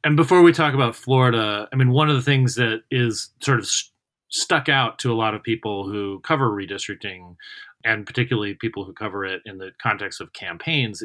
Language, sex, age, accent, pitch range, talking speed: English, male, 30-49, American, 100-130 Hz, 200 wpm